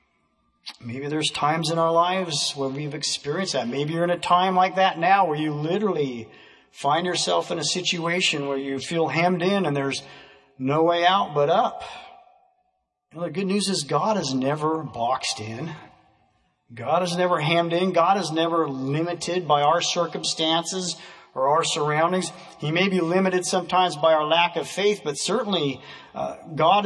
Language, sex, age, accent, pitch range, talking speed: English, male, 40-59, American, 150-190 Hz, 170 wpm